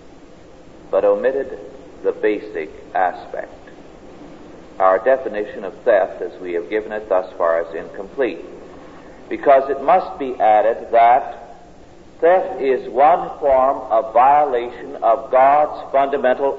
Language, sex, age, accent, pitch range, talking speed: English, male, 50-69, American, 110-160 Hz, 120 wpm